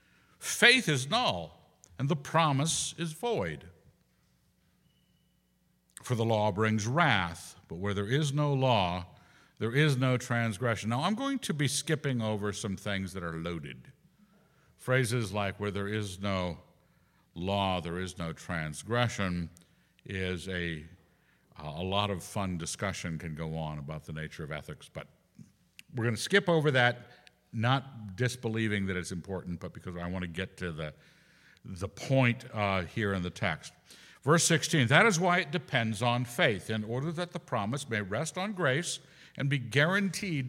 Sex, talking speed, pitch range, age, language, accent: male, 160 wpm, 95-155 Hz, 60-79, English, American